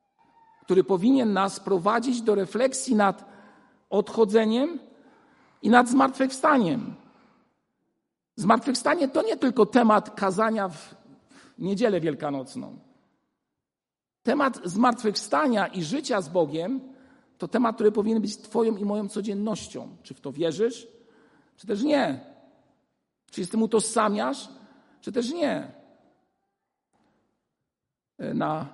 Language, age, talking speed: Polish, 50-69, 100 wpm